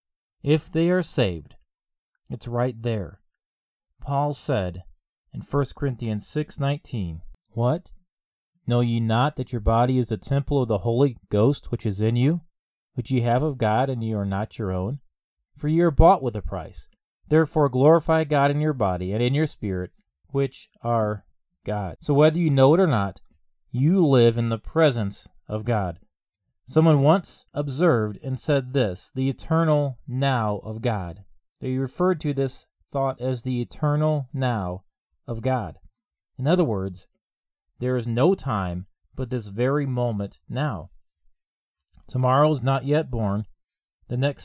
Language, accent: English, American